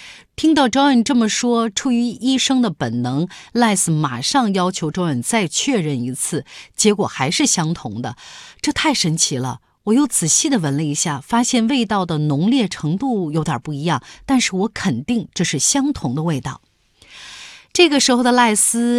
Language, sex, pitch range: Chinese, female, 155-235 Hz